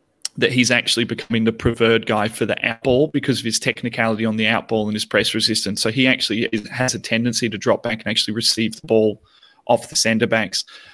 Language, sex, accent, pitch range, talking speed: English, male, Australian, 110-120 Hz, 215 wpm